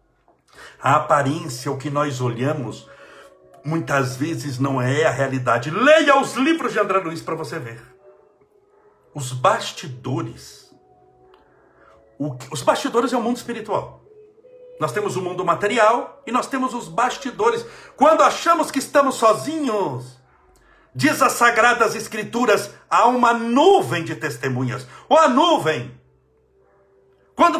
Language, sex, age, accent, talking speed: Portuguese, male, 60-79, Brazilian, 130 wpm